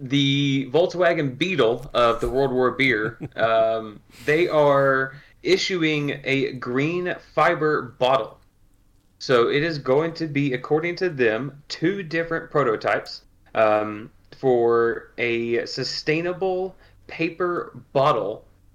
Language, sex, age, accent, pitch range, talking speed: English, male, 30-49, American, 110-140 Hz, 110 wpm